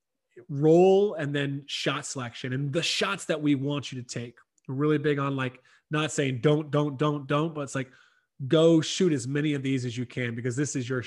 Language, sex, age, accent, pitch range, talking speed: English, male, 30-49, American, 135-170 Hz, 215 wpm